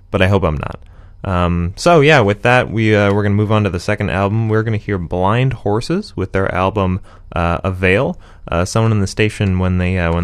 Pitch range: 85-110 Hz